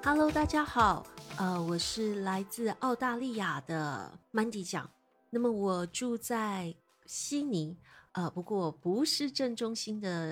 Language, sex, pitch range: Chinese, female, 170-225 Hz